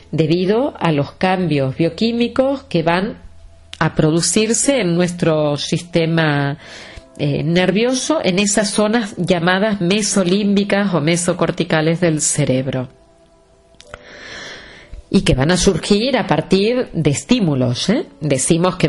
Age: 40-59